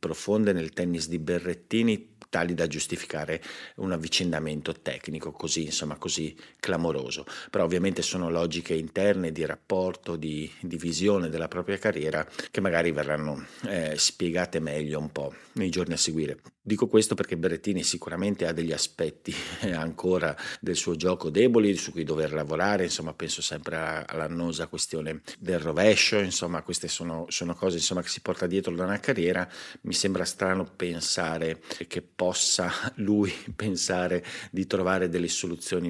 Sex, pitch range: male, 80-90 Hz